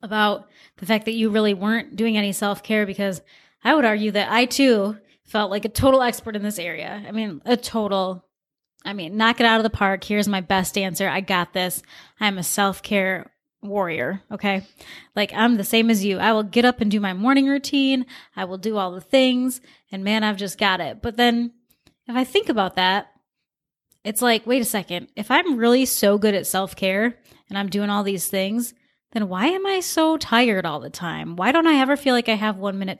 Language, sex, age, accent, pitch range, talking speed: English, female, 20-39, American, 195-235 Hz, 225 wpm